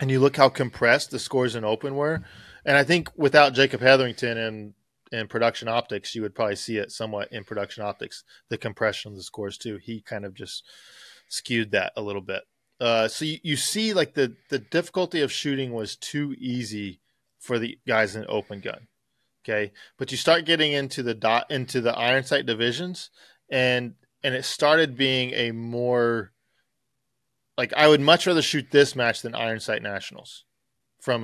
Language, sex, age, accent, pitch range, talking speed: English, male, 20-39, American, 110-135 Hz, 185 wpm